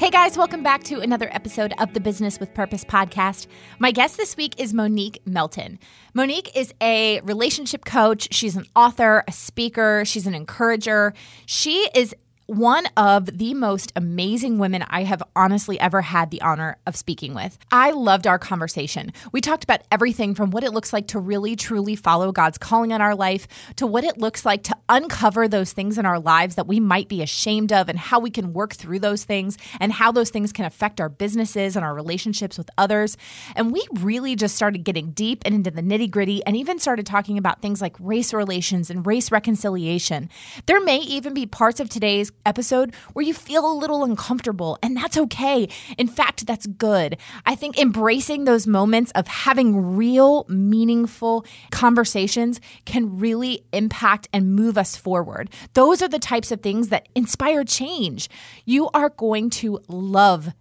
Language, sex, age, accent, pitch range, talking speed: English, female, 20-39, American, 195-240 Hz, 185 wpm